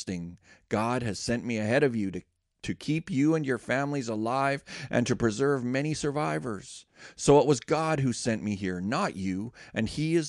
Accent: American